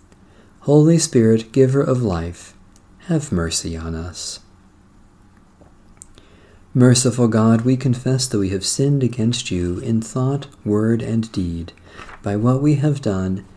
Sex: male